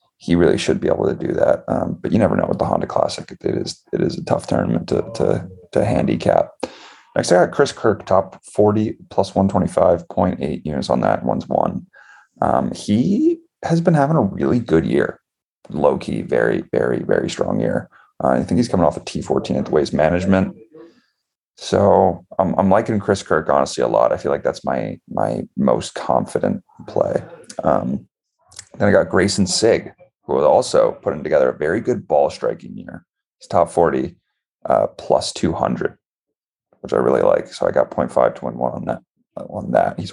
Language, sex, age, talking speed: English, male, 30-49, 195 wpm